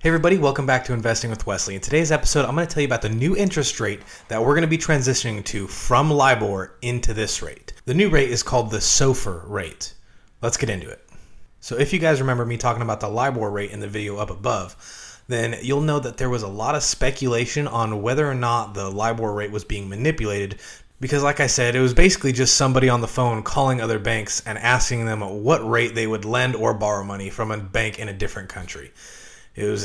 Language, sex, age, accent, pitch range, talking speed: English, male, 30-49, American, 105-135 Hz, 230 wpm